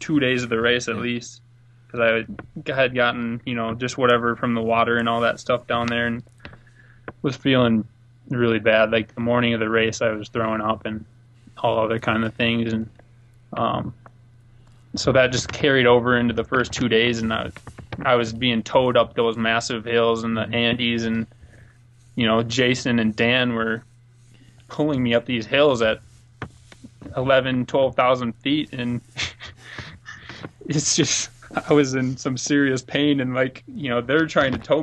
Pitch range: 115-125 Hz